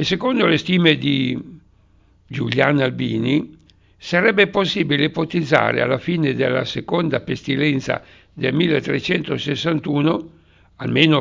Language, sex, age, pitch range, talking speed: Italian, male, 60-79, 140-170 Hz, 95 wpm